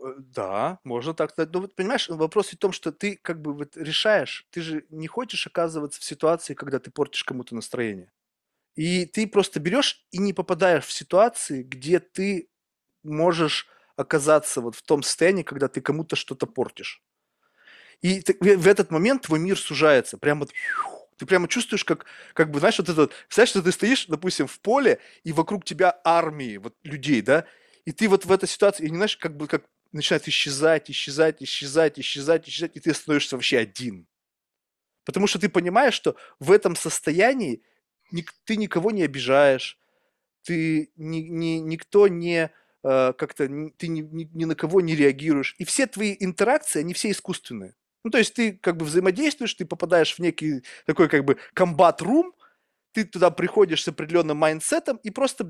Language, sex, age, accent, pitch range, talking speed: Russian, male, 20-39, native, 155-195 Hz, 170 wpm